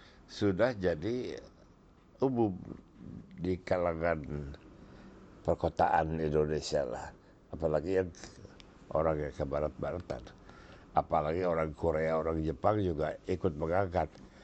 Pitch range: 75-95 Hz